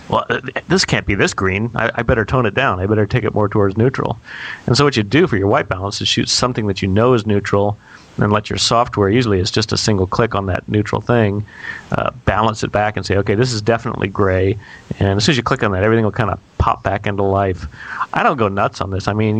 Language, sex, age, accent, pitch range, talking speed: English, male, 40-59, American, 100-115 Hz, 265 wpm